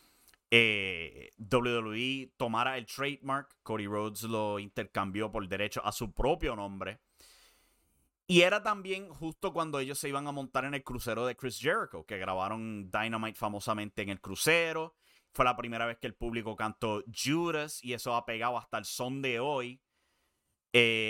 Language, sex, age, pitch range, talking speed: English, male, 30-49, 110-145 Hz, 160 wpm